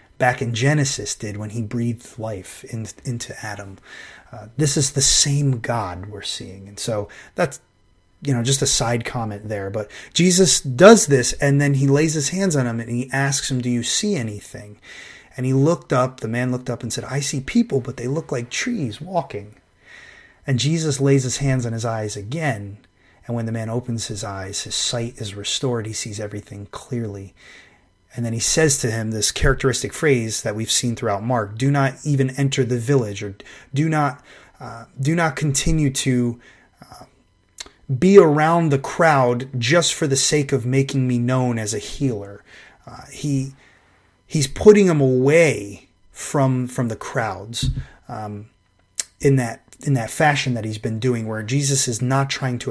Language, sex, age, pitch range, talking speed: English, male, 30-49, 110-140 Hz, 185 wpm